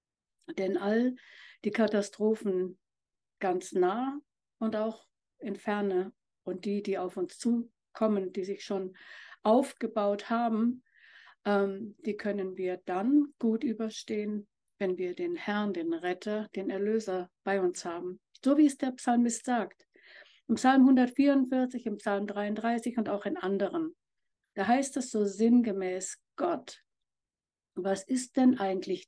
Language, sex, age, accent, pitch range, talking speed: German, female, 60-79, German, 195-250 Hz, 135 wpm